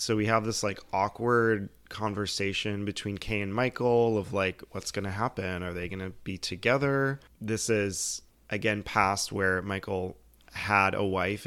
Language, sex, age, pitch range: English, male, 20-39, 95-110 Hz